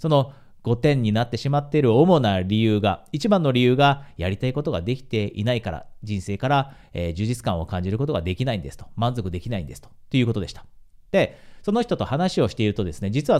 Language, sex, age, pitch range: Japanese, male, 40-59, 100-150 Hz